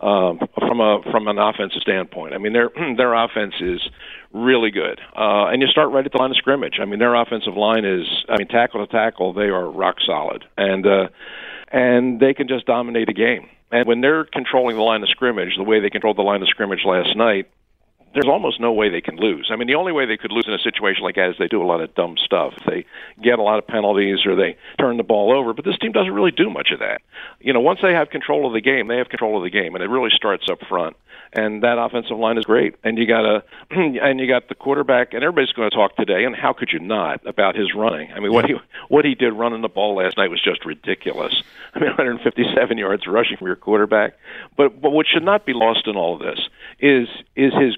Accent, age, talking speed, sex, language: American, 50-69, 255 wpm, male, English